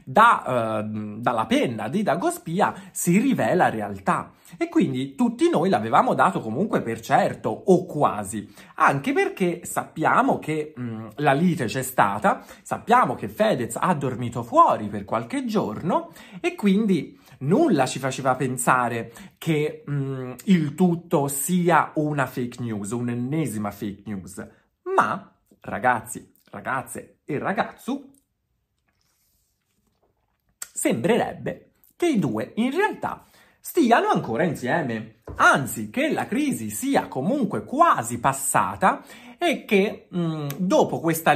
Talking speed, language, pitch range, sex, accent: 120 wpm, Italian, 120-185 Hz, male, native